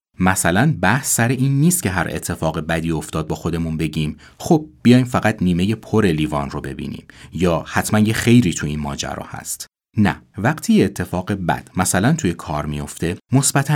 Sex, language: male, Persian